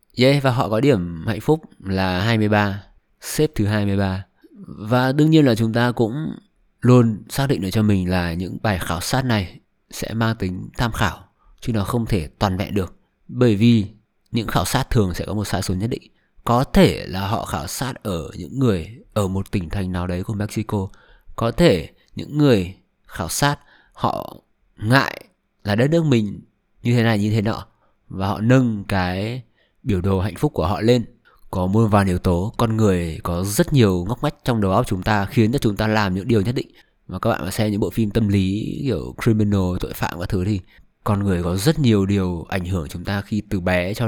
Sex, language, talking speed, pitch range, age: male, Vietnamese, 215 wpm, 95-115 Hz, 20-39